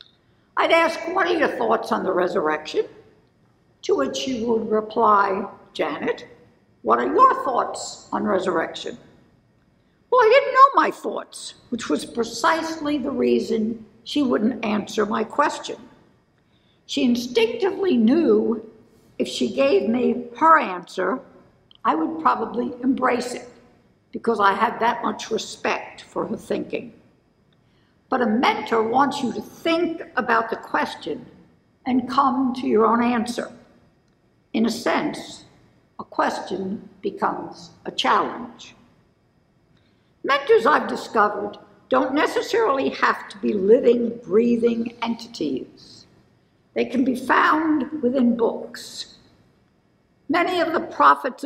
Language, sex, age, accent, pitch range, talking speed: English, female, 60-79, American, 220-295 Hz, 120 wpm